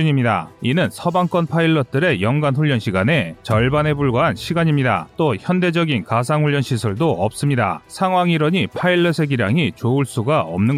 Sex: male